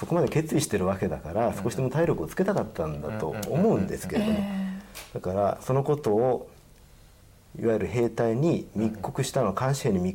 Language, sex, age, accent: Japanese, male, 40-59, native